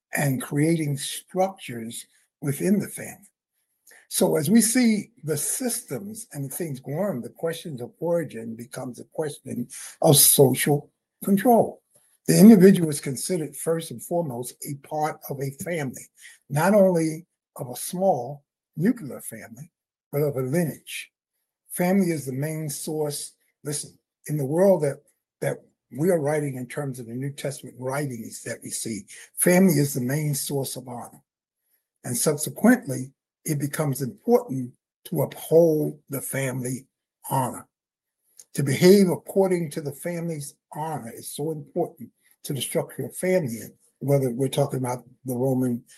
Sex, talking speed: male, 145 wpm